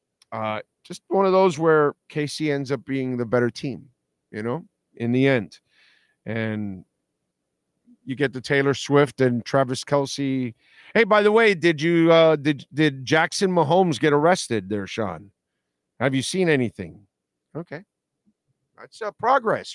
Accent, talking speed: American, 150 wpm